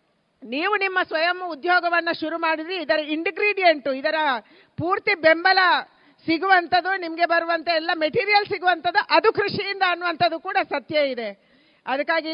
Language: Kannada